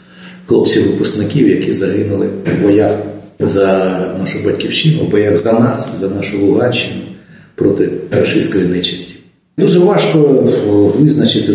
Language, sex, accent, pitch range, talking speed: Ukrainian, male, native, 100-150 Hz, 110 wpm